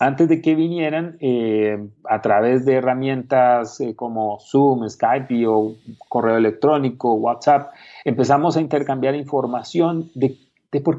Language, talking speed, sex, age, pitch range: Spanish, 130 wpm, male, 40-59, 125-160 Hz